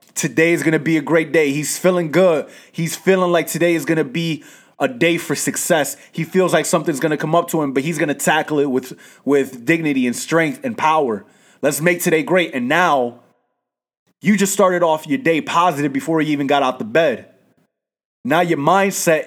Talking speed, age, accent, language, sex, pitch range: 210 wpm, 20-39, American, English, male, 145-190 Hz